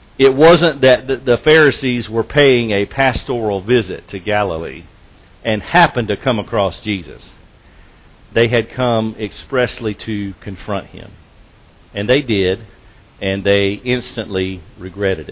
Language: English